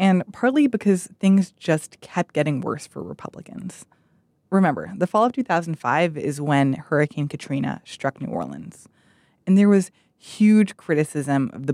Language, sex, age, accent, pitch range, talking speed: English, female, 20-39, American, 145-205 Hz, 150 wpm